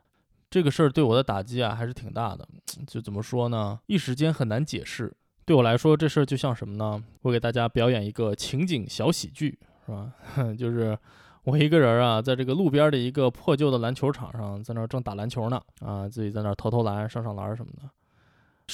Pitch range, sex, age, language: 110-145 Hz, male, 20-39, Chinese